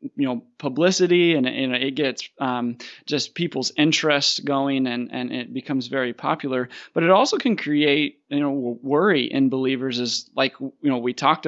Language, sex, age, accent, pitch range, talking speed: English, male, 20-39, American, 130-155 Hz, 190 wpm